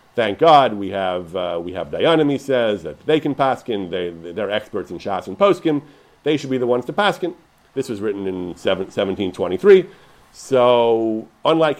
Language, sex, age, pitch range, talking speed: English, male, 50-69, 110-150 Hz, 185 wpm